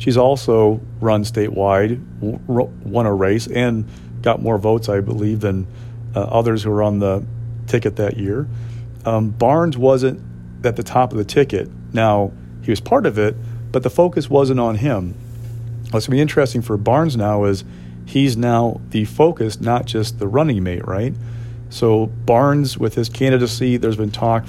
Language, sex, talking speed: English, male, 175 wpm